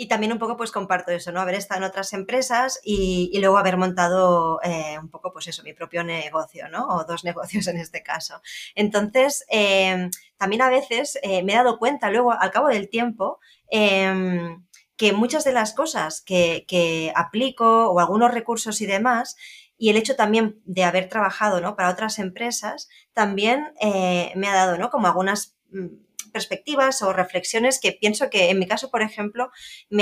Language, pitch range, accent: Spanish, 180-220 Hz, Spanish